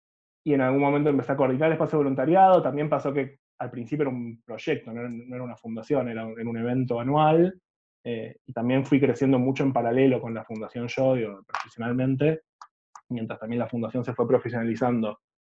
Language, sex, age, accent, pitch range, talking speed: Spanish, male, 20-39, Argentinian, 110-130 Hz, 185 wpm